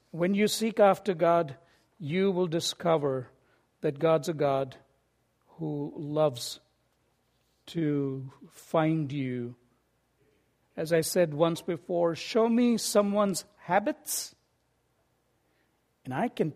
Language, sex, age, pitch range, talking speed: English, male, 60-79, 160-225 Hz, 105 wpm